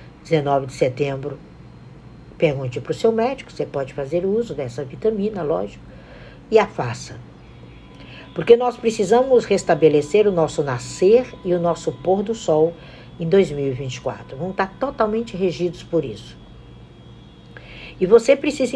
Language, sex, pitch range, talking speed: Portuguese, female, 140-195 Hz, 135 wpm